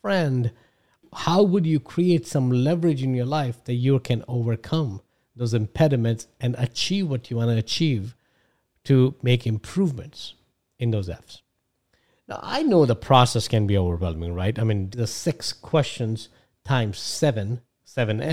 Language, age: English, 50-69